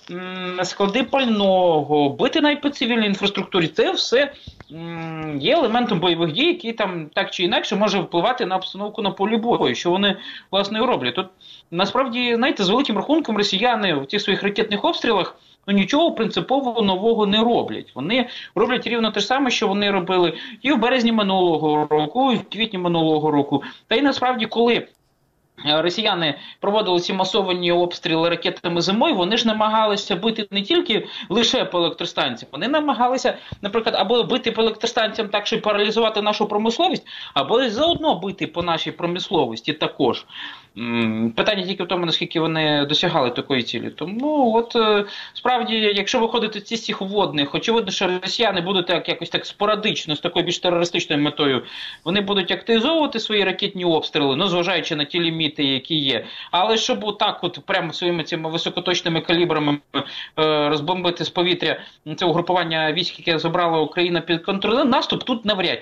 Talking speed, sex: 155 wpm, male